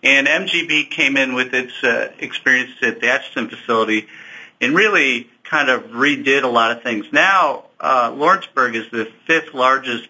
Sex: male